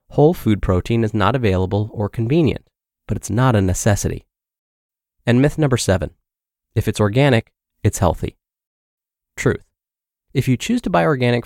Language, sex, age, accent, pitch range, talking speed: English, male, 30-49, American, 105-150 Hz, 150 wpm